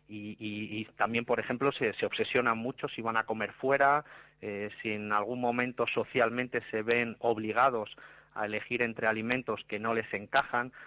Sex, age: male, 30-49